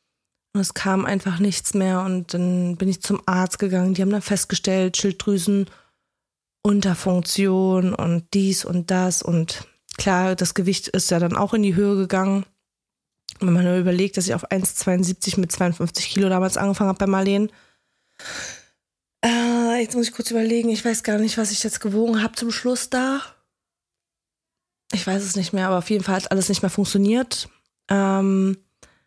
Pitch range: 185-205 Hz